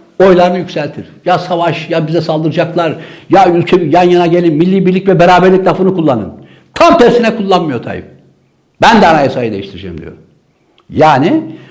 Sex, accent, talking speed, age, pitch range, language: male, native, 145 wpm, 60-79, 100-170 Hz, Turkish